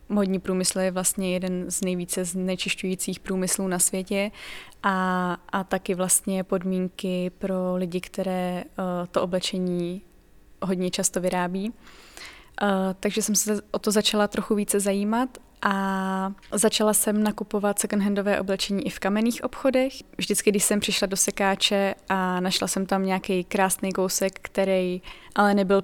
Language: Czech